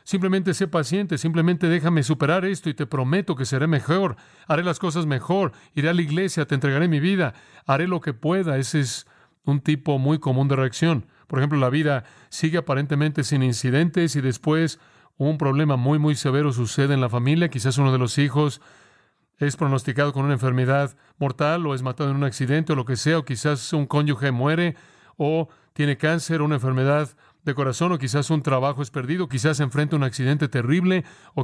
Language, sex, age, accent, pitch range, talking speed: English, male, 40-59, Mexican, 135-160 Hz, 200 wpm